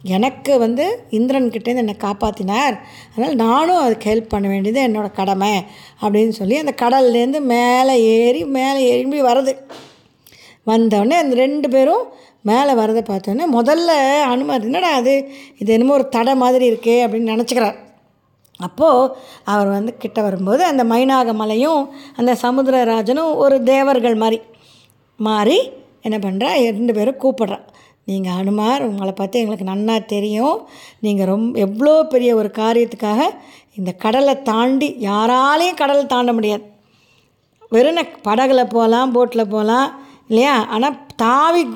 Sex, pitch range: female, 215-270 Hz